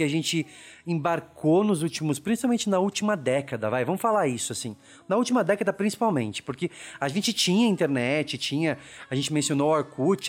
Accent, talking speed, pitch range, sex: Brazilian, 175 wpm, 140-200 Hz, male